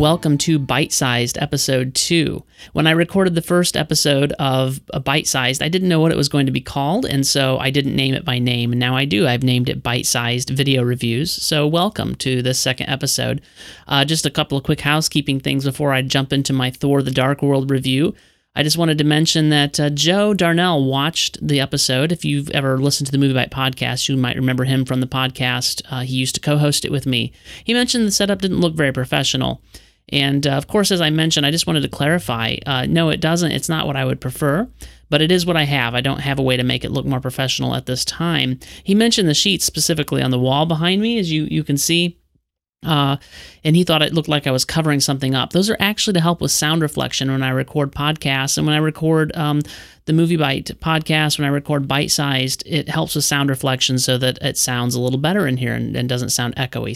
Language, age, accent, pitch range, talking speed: English, 30-49, American, 130-160 Hz, 235 wpm